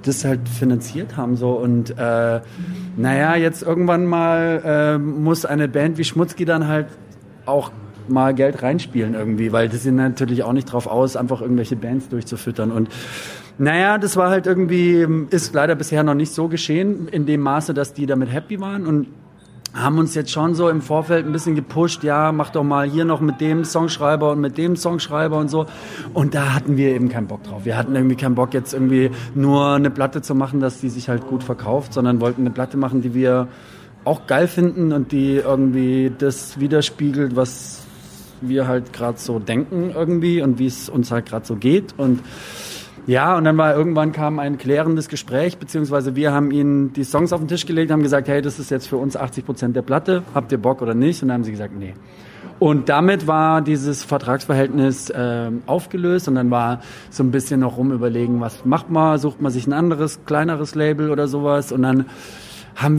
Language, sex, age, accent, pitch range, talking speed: German, male, 30-49, German, 130-160 Hz, 205 wpm